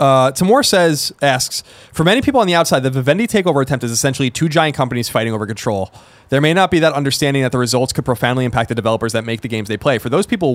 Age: 20-39